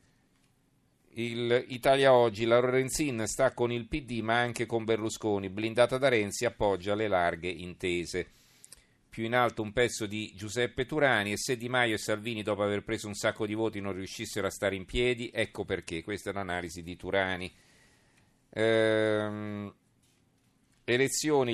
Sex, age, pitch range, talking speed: male, 40-59, 100-120 Hz, 155 wpm